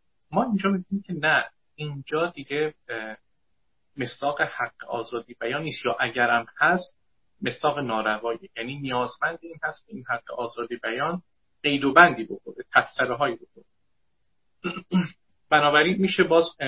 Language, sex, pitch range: Persian, male, 120-165 Hz